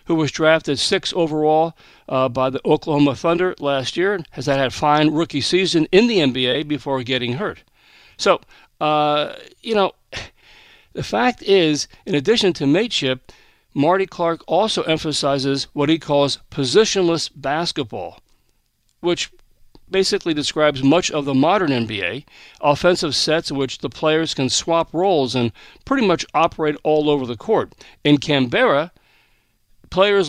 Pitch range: 140-175 Hz